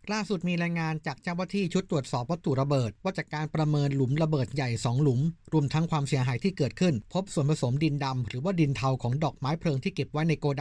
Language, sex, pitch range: Thai, male, 135-165 Hz